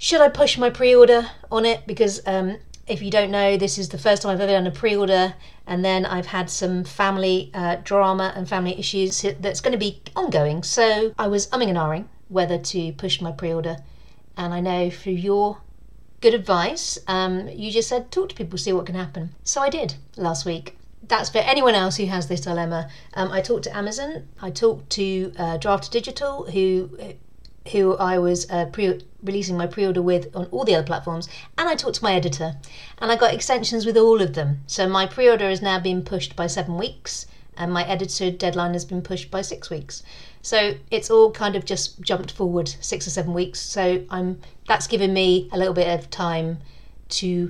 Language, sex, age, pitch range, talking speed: English, female, 50-69, 170-205 Hz, 205 wpm